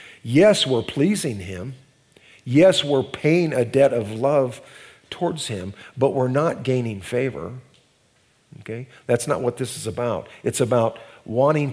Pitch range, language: 105-135 Hz, English